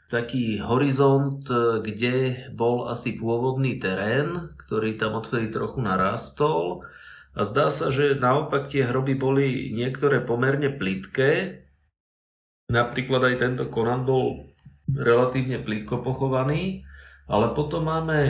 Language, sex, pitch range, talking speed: Slovak, male, 110-135 Hz, 110 wpm